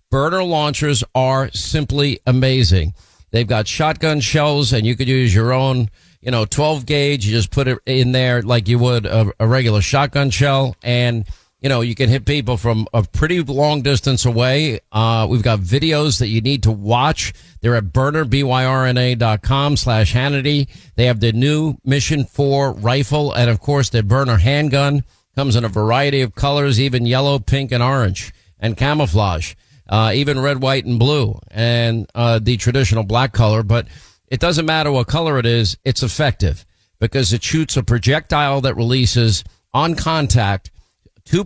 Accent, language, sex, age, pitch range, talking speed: American, English, male, 50-69, 115-140 Hz, 170 wpm